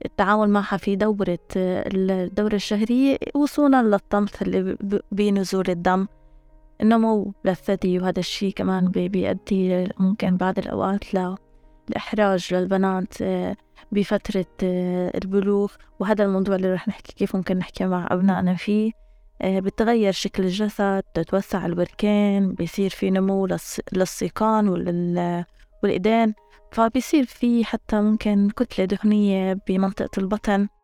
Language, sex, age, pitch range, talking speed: Arabic, female, 20-39, 190-220 Hz, 105 wpm